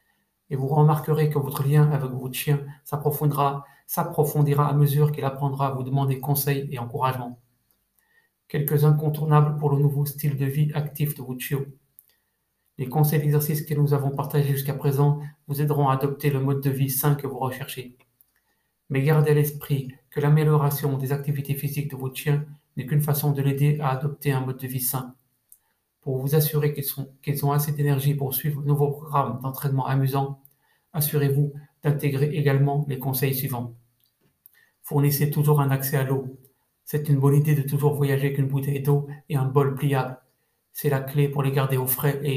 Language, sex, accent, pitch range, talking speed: French, male, French, 135-150 Hz, 180 wpm